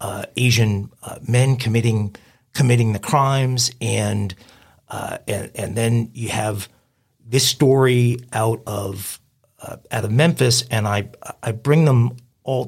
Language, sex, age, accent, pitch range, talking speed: English, male, 50-69, American, 105-125 Hz, 135 wpm